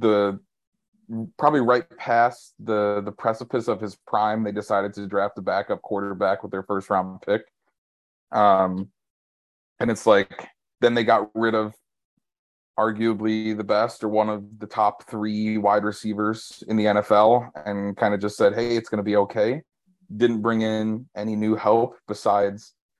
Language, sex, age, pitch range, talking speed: English, male, 30-49, 100-115 Hz, 160 wpm